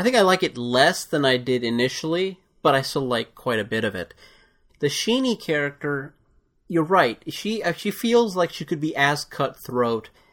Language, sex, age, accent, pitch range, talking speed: English, male, 30-49, American, 120-160 Hz, 190 wpm